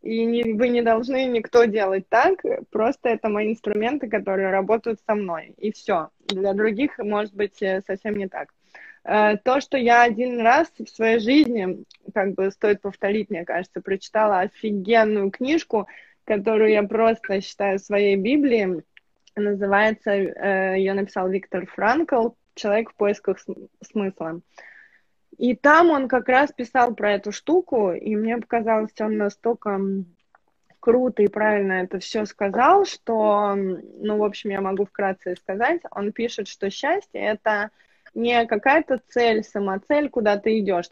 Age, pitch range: 20-39, 200-245 Hz